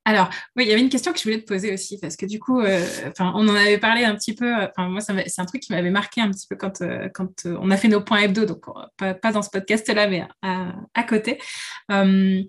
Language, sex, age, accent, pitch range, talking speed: French, female, 20-39, French, 190-230 Hz, 280 wpm